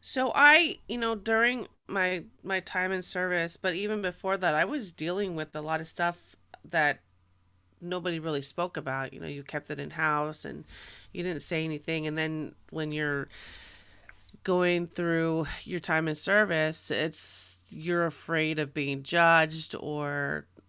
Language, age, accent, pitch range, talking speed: English, 30-49, American, 140-170 Hz, 160 wpm